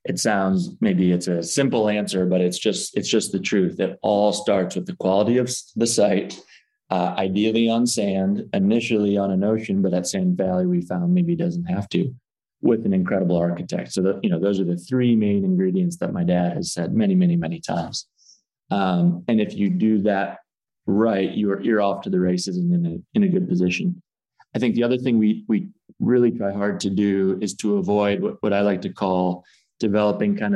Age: 20-39